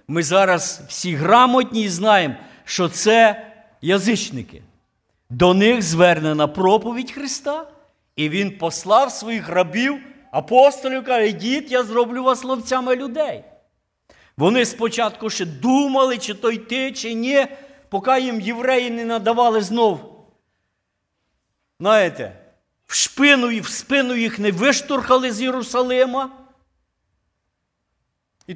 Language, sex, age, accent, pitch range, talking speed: Ukrainian, male, 50-69, native, 195-255 Hz, 115 wpm